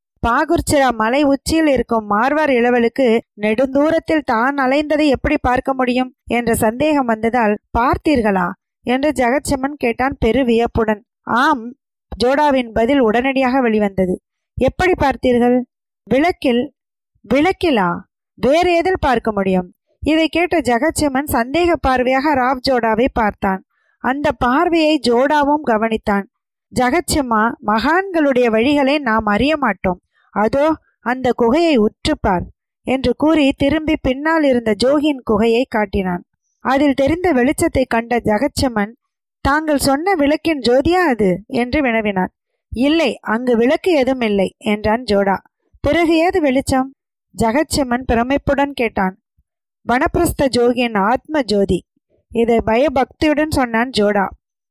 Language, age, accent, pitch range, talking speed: Tamil, 20-39, native, 230-295 Hz, 100 wpm